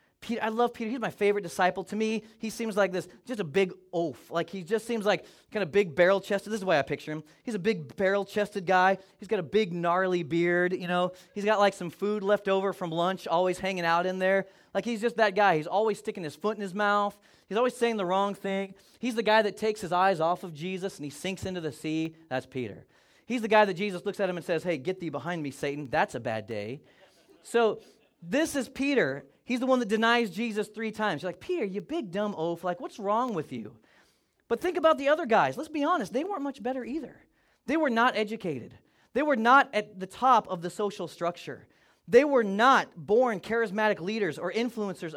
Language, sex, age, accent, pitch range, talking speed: English, male, 20-39, American, 175-225 Hz, 235 wpm